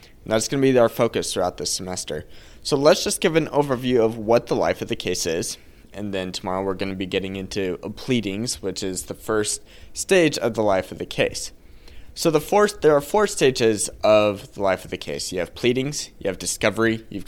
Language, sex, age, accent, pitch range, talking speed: English, male, 20-39, American, 95-125 Hz, 220 wpm